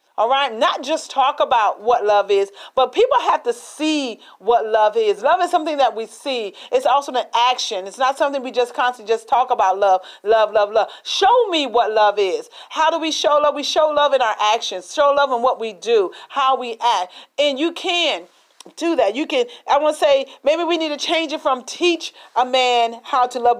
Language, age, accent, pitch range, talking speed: English, 40-59, American, 240-305 Hz, 225 wpm